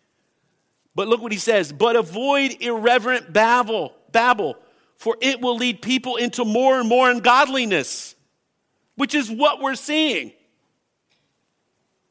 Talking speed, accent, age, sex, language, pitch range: 125 wpm, American, 50-69, male, English, 225-280 Hz